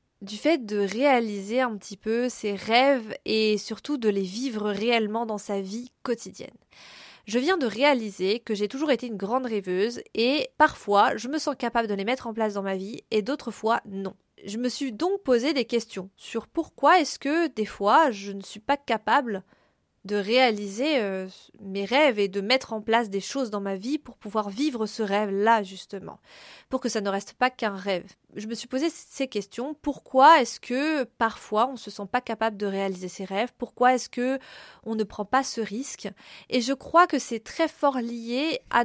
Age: 20-39